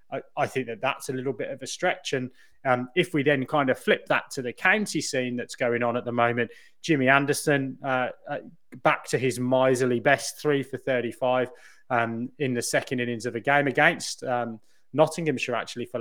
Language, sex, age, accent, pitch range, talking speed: English, male, 20-39, British, 120-145 Hz, 205 wpm